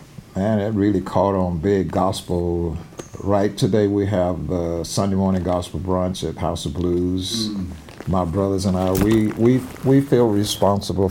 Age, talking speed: 60-79, 150 wpm